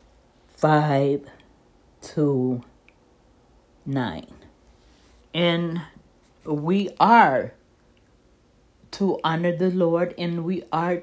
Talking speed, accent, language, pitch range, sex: 70 wpm, American, English, 150-190 Hz, female